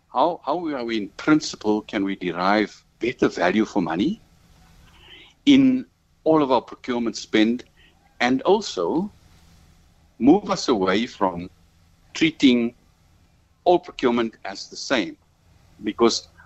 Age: 60-79